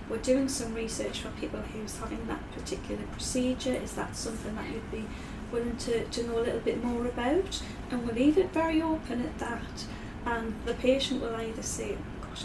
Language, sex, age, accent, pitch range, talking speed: English, female, 30-49, British, 235-275 Hz, 200 wpm